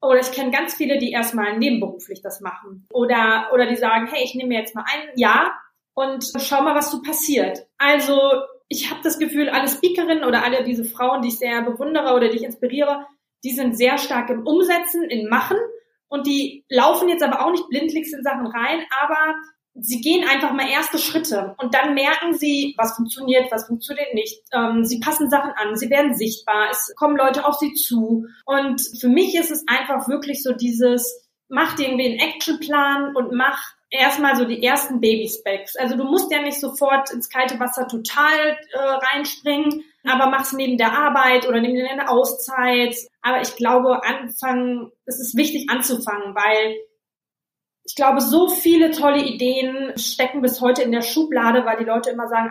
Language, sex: German, female